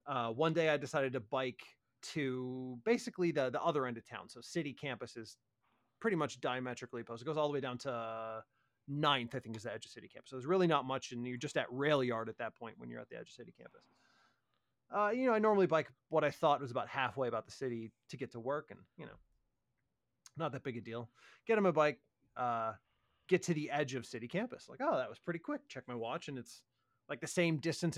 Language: English